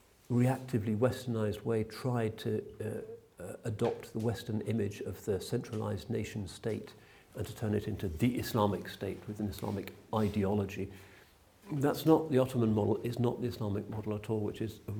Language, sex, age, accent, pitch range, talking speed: English, male, 50-69, British, 100-115 Hz, 170 wpm